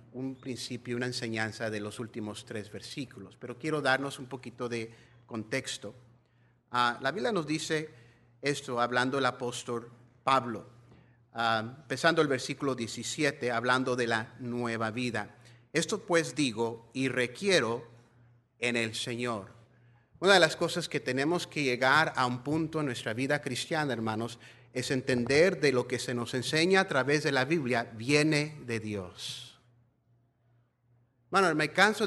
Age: 40-59